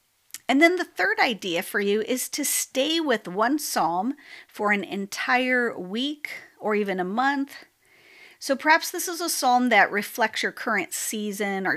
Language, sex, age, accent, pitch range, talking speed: English, female, 40-59, American, 190-250 Hz, 170 wpm